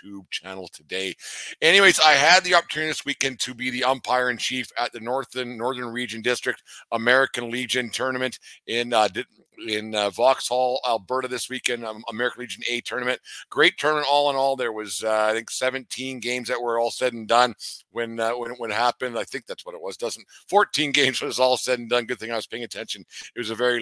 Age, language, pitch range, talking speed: 50-69, English, 115-130 Hz, 215 wpm